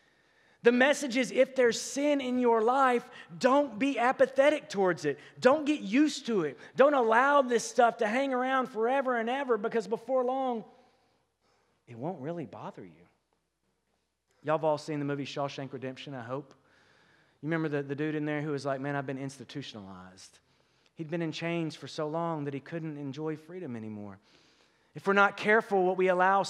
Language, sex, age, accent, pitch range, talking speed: English, male, 30-49, American, 145-230 Hz, 185 wpm